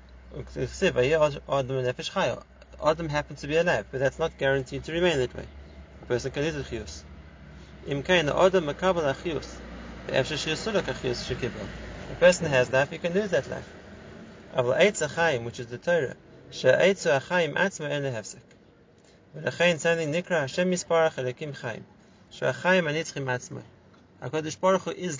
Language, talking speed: English, 80 wpm